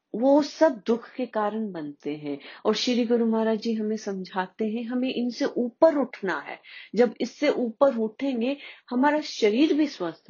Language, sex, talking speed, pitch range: Hindi, female, 165 wpm, 170-250 Hz